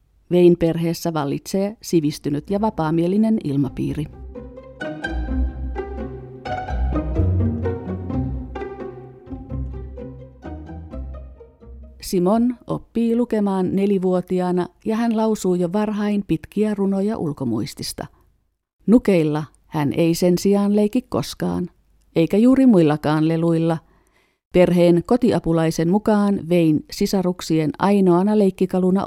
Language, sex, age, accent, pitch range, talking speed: Finnish, female, 50-69, native, 145-205 Hz, 75 wpm